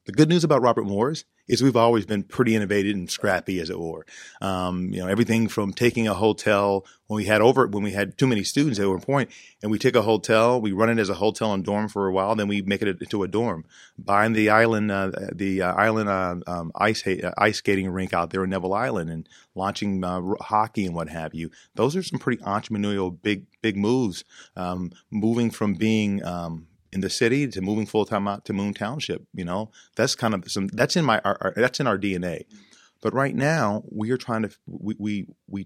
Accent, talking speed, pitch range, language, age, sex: American, 230 wpm, 95-110 Hz, English, 30-49, male